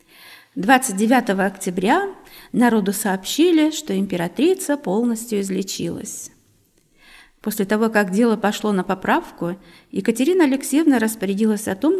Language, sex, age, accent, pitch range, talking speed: Russian, female, 40-59, native, 200-275 Hz, 100 wpm